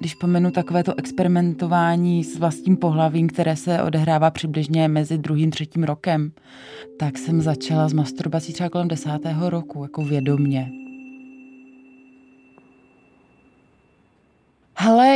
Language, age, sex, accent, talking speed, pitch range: Czech, 20-39, female, native, 110 wpm, 160-220 Hz